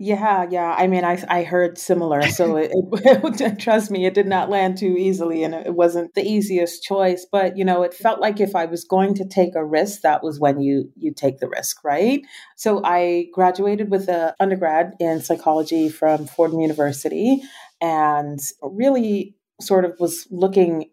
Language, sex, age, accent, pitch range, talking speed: English, female, 40-59, American, 145-185 Hz, 190 wpm